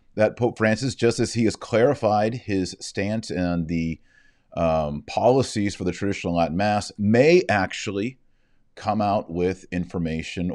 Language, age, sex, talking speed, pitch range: English, 30-49, male, 140 wpm, 80-100 Hz